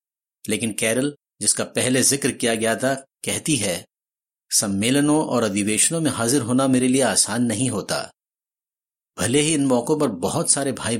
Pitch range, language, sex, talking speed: 115-145 Hz, Hindi, male, 160 wpm